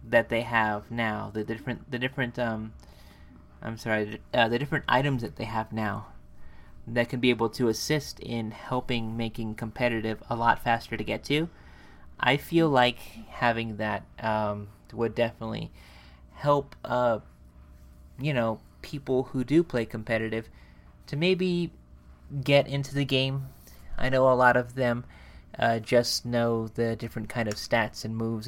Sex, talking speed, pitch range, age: male, 155 wpm, 105-125 Hz, 30-49